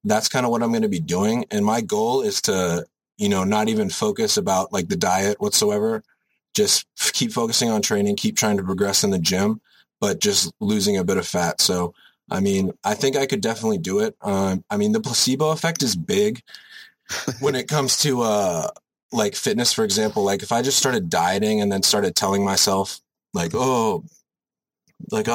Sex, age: male, 30-49